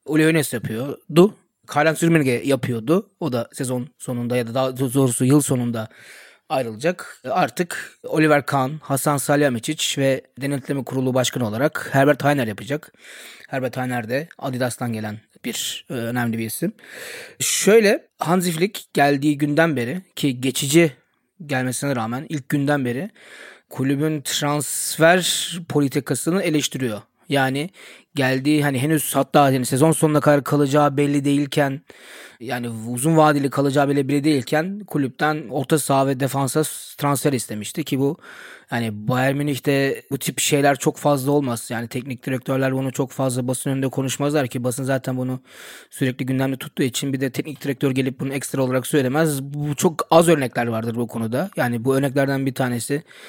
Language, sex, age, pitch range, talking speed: Turkish, male, 30-49, 130-150 Hz, 145 wpm